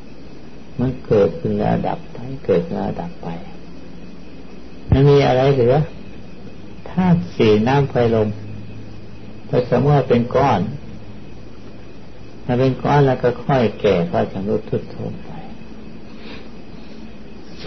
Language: Thai